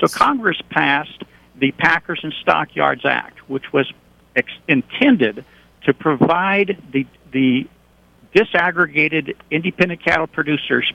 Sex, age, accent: male, 60-79, American